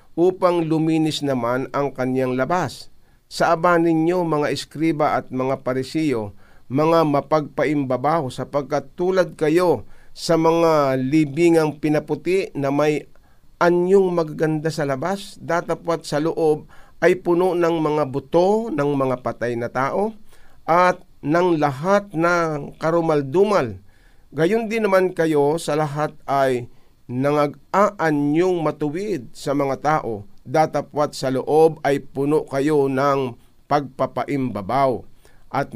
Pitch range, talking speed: 135-165 Hz, 115 wpm